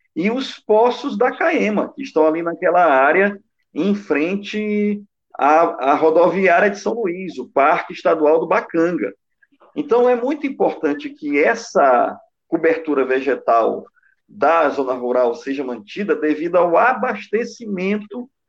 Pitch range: 170-255 Hz